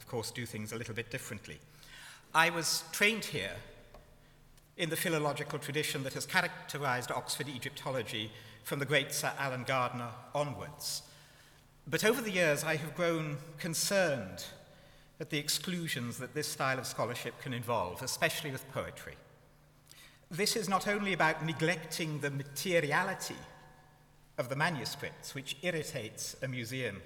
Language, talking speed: English, 140 wpm